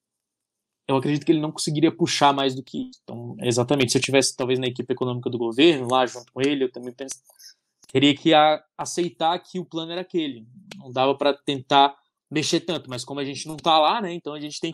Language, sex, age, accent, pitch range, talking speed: Portuguese, male, 20-39, Brazilian, 140-190 Hz, 220 wpm